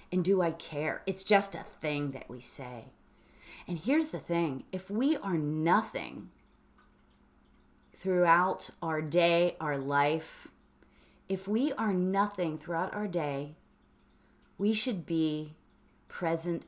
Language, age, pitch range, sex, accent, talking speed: English, 30-49, 140-210 Hz, female, American, 125 wpm